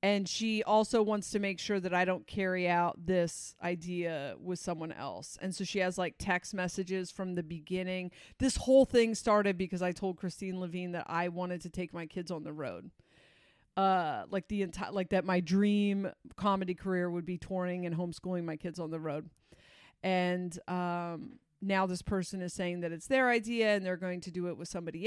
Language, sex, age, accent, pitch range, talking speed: English, female, 30-49, American, 175-200 Hz, 205 wpm